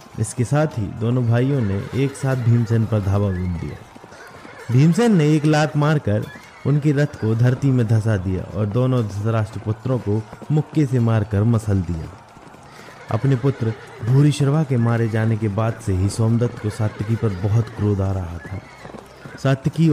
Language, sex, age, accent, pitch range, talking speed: Hindi, male, 30-49, native, 105-135 Hz, 165 wpm